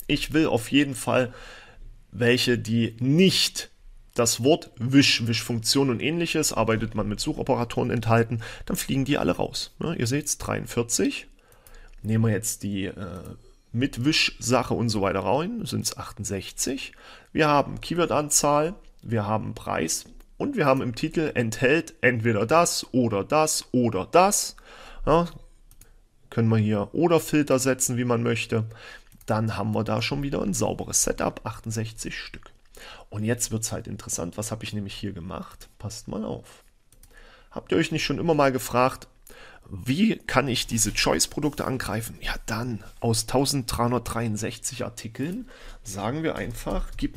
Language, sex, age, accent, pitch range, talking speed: German, male, 40-59, German, 110-140 Hz, 155 wpm